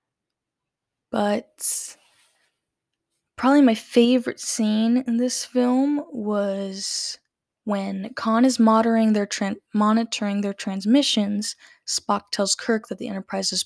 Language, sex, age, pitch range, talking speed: English, female, 10-29, 195-235 Hz, 105 wpm